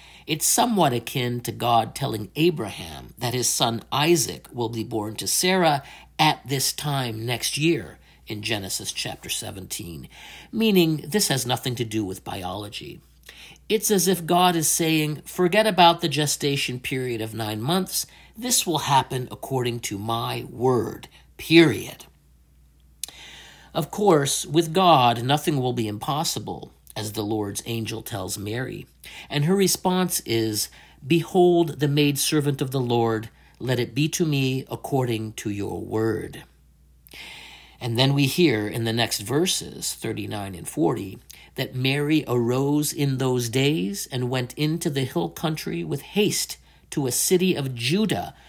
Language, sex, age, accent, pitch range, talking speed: English, male, 50-69, American, 110-155 Hz, 145 wpm